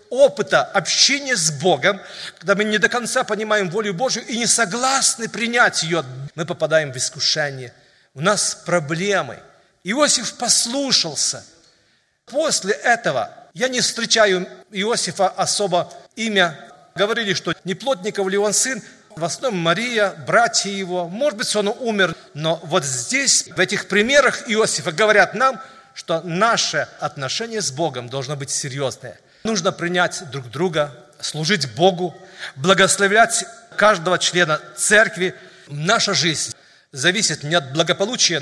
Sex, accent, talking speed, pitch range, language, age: male, native, 130 wpm, 165-215 Hz, Russian, 40-59